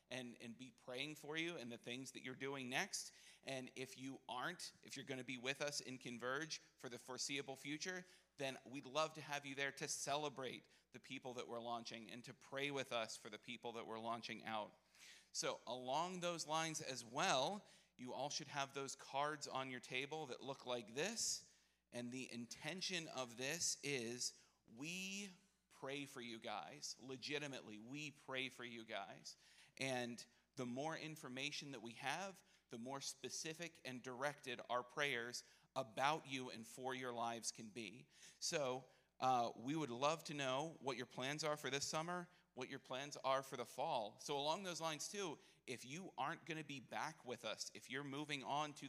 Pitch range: 125-150 Hz